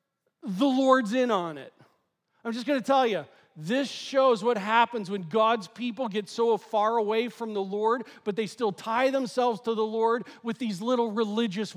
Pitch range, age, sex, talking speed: 165-230 Hz, 40-59, male, 190 wpm